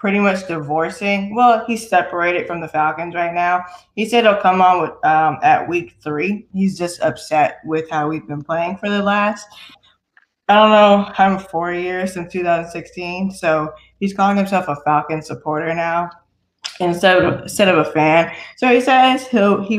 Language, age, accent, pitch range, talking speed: English, 20-39, American, 155-200 Hz, 185 wpm